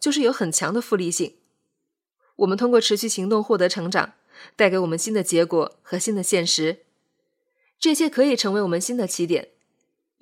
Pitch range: 180-235 Hz